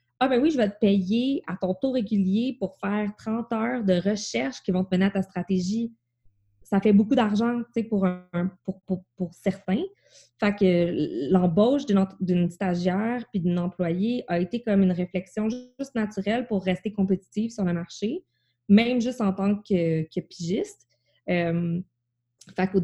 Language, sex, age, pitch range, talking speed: French, female, 20-39, 180-220 Hz, 180 wpm